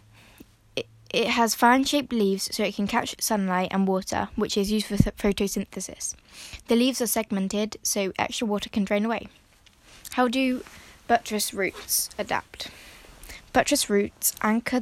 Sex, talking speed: female, 140 wpm